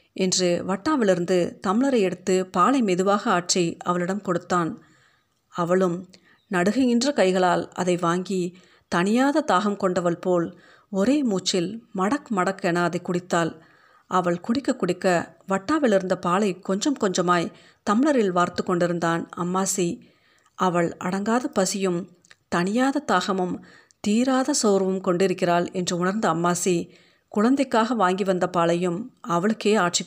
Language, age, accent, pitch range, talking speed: Tamil, 50-69, native, 175-210 Hz, 100 wpm